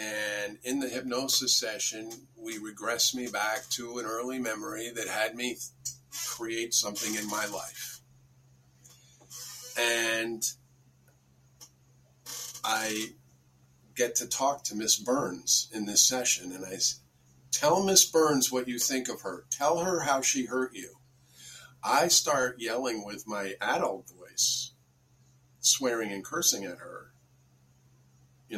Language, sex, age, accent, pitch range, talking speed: English, male, 50-69, American, 115-135 Hz, 130 wpm